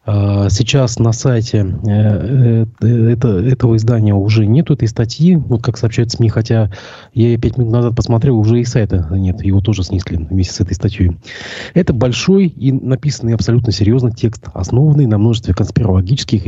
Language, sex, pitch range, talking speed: Russian, male, 105-130 Hz, 155 wpm